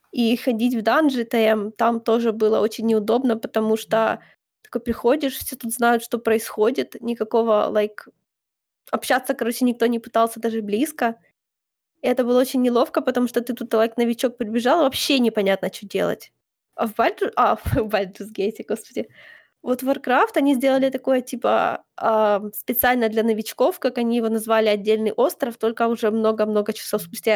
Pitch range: 220-255 Hz